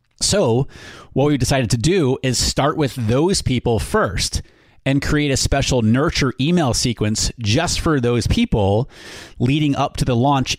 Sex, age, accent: male, 30-49, American